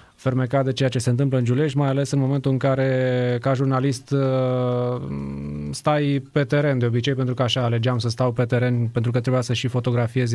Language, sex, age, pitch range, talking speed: Romanian, male, 20-39, 120-140 Hz, 205 wpm